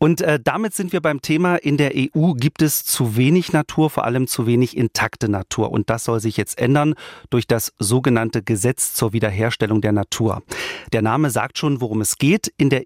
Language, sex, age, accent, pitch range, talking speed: German, male, 40-59, German, 115-145 Hz, 200 wpm